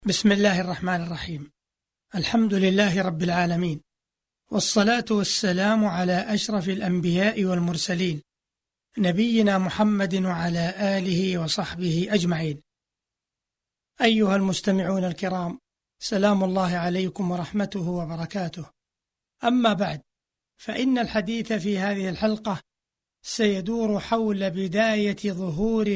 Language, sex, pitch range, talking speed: Arabic, male, 185-215 Hz, 90 wpm